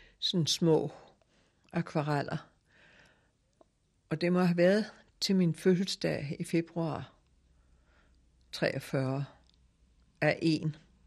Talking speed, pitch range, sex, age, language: 85 wpm, 135-175 Hz, female, 60-79, Danish